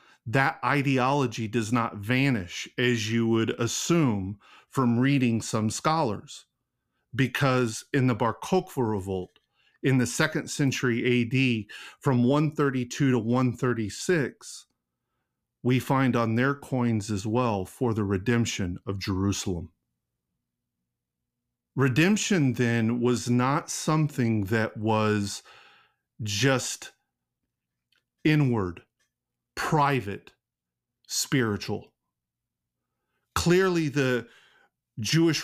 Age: 40-59